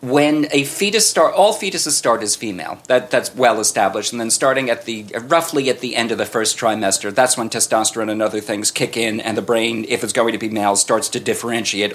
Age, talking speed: 40-59, 225 wpm